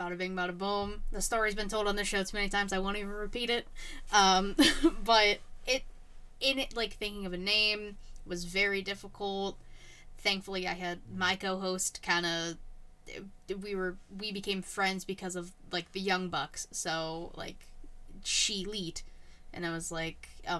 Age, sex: 10-29, female